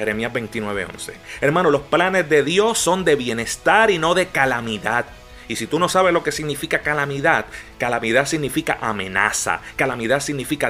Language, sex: Spanish, male